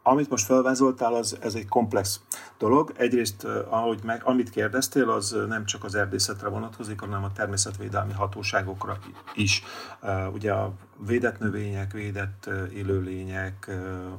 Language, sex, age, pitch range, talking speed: Hungarian, male, 40-59, 95-110 Hz, 125 wpm